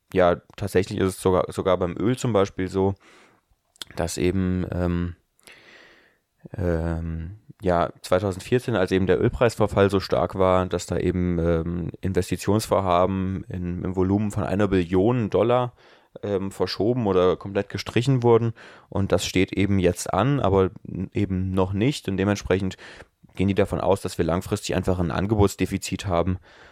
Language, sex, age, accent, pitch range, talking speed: German, male, 20-39, German, 90-105 Hz, 145 wpm